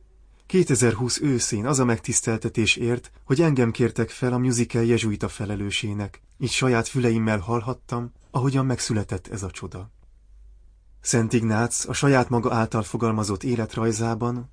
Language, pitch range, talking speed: Hungarian, 100-125 Hz, 130 wpm